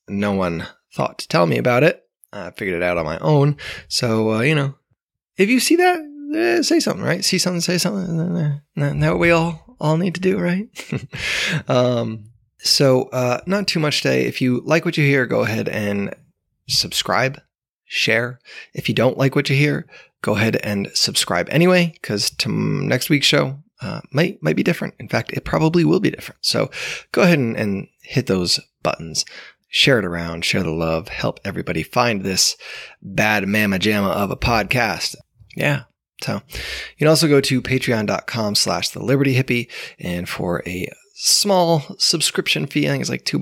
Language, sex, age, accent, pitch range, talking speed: English, male, 20-39, American, 100-165 Hz, 185 wpm